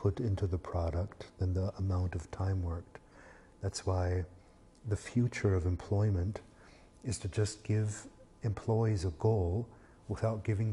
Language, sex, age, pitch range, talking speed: English, male, 50-69, 95-115 Hz, 140 wpm